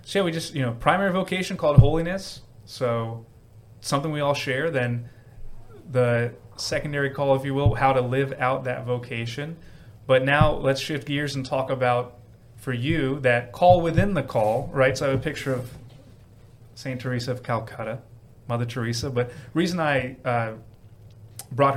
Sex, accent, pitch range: male, American, 115-135 Hz